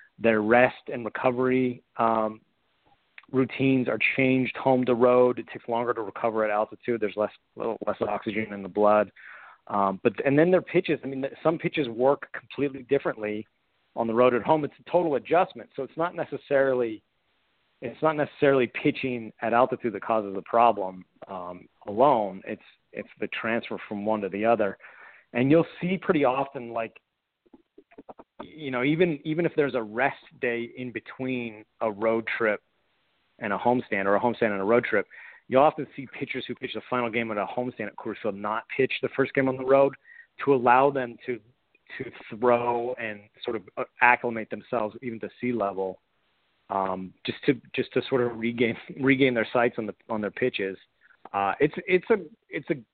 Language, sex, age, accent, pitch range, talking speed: English, male, 40-59, American, 115-135 Hz, 185 wpm